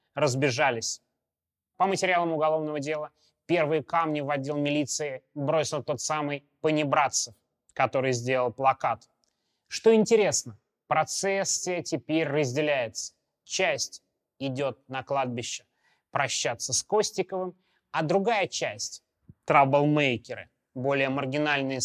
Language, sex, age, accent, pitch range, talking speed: Russian, male, 20-39, native, 135-170 Hz, 95 wpm